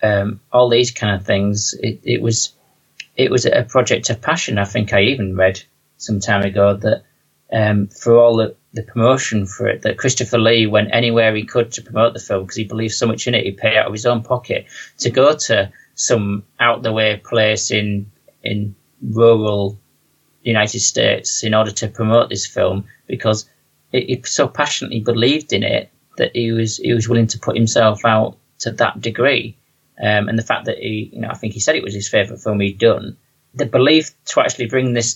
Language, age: English, 30-49